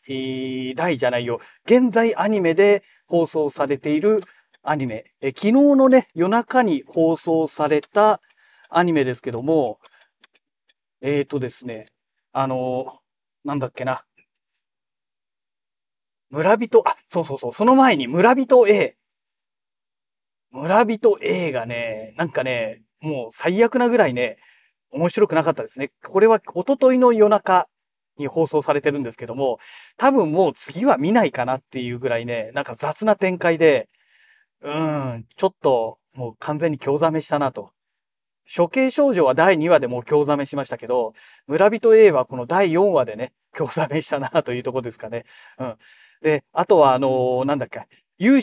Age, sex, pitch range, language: 40-59, male, 135-225 Hz, Japanese